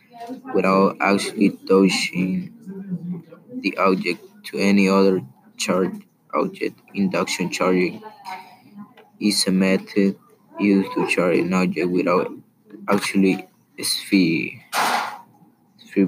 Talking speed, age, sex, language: 90 wpm, 20-39, male, English